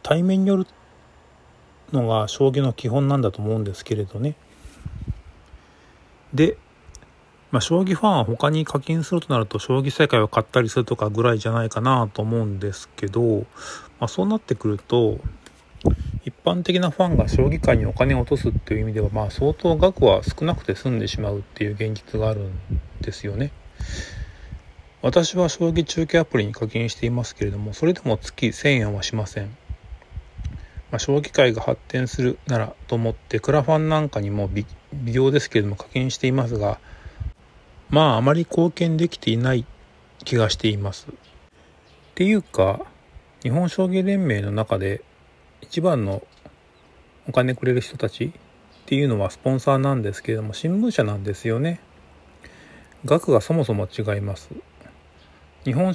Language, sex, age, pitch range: Japanese, male, 40-59, 100-140 Hz